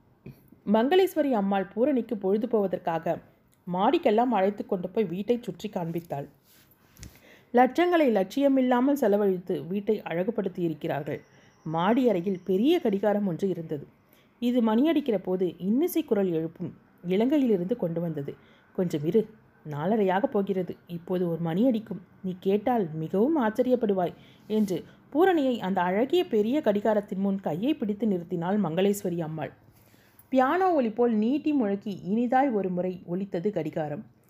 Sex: female